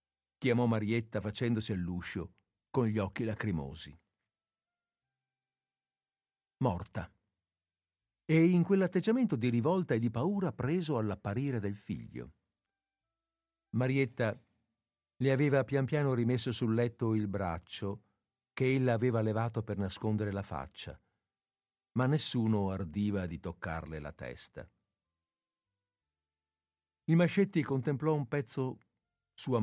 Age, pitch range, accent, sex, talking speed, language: 50-69, 95-135 Hz, native, male, 105 wpm, Italian